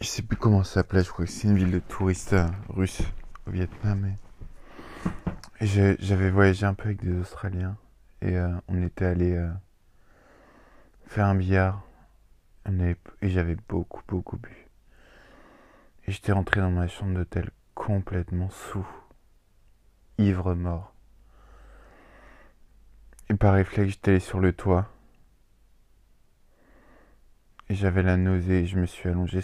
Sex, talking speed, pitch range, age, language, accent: male, 145 wpm, 90-100 Hz, 20-39, French, French